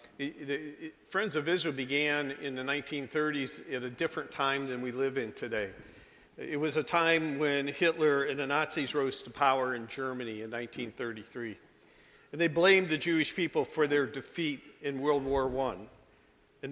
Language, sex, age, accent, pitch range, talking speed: English, male, 50-69, American, 130-160 Hz, 165 wpm